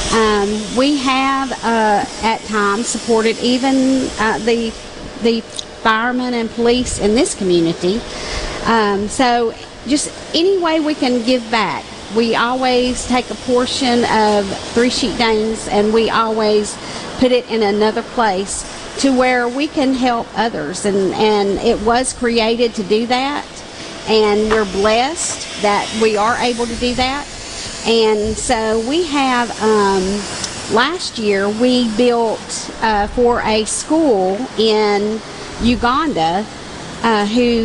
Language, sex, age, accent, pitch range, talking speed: English, female, 50-69, American, 205-245 Hz, 135 wpm